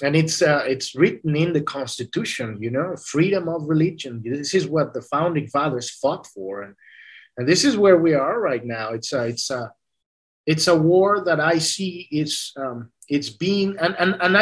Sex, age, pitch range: male, 30-49, 150-185 Hz